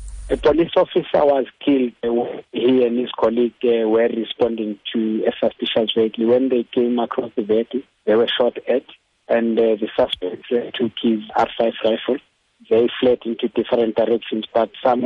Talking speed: 165 wpm